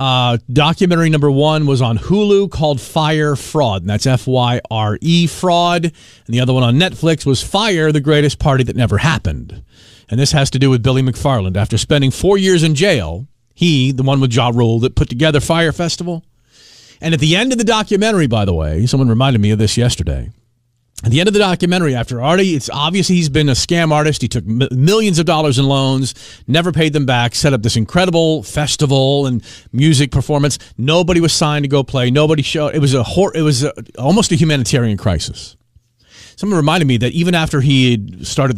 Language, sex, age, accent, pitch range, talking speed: English, male, 40-59, American, 120-155 Hz, 205 wpm